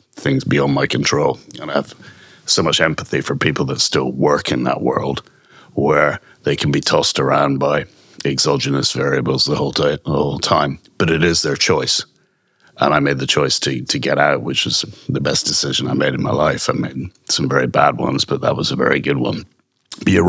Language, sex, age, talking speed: English, male, 60-79, 215 wpm